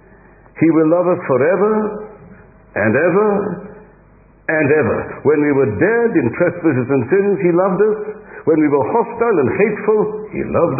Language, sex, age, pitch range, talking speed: English, male, 60-79, 115-190 Hz, 155 wpm